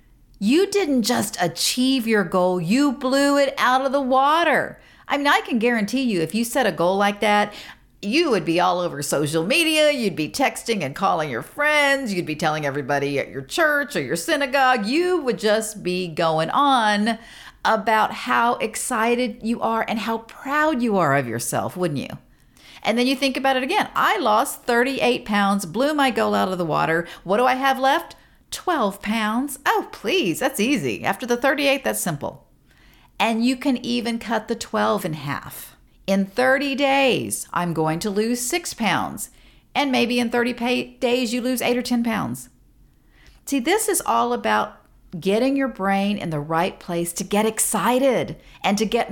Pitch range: 200-270 Hz